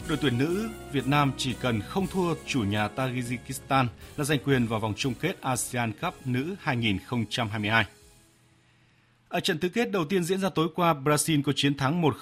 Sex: male